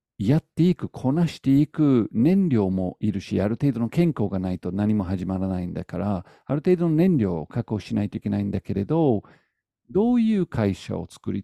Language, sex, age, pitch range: Japanese, male, 50-69, 105-160 Hz